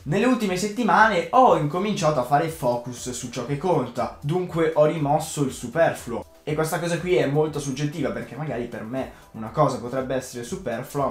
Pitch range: 125-170 Hz